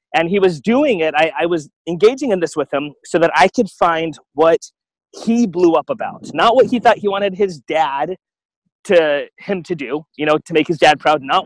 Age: 30-49